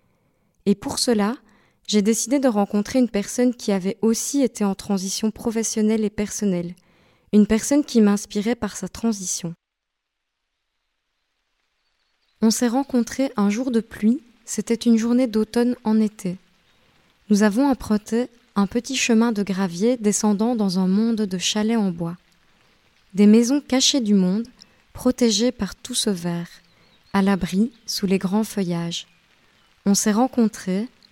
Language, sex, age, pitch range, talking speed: French, female, 20-39, 200-240 Hz, 140 wpm